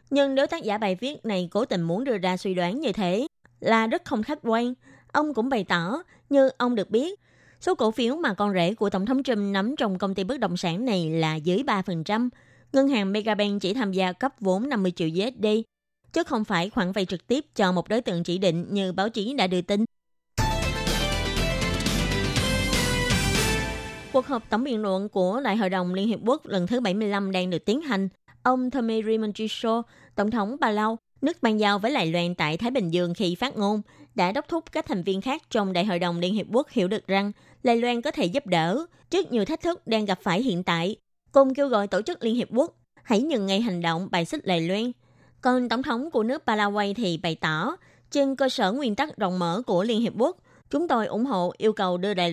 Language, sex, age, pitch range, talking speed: Vietnamese, female, 20-39, 185-255 Hz, 225 wpm